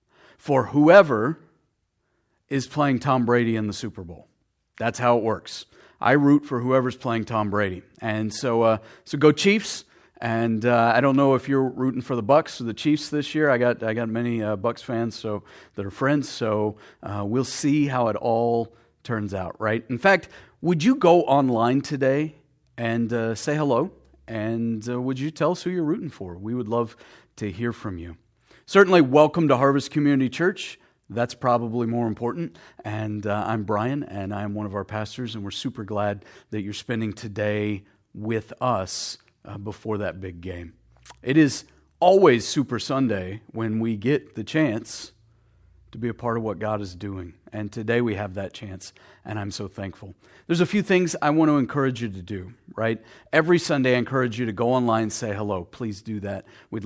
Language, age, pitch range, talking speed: English, 40-59, 105-135 Hz, 195 wpm